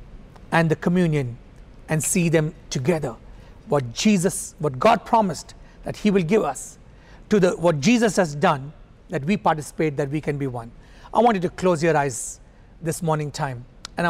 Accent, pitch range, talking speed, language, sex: Indian, 155-205 Hz, 180 wpm, English, male